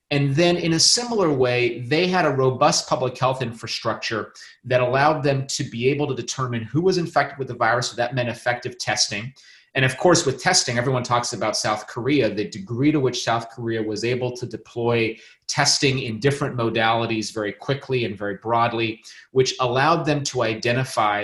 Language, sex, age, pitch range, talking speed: English, male, 30-49, 115-145 Hz, 185 wpm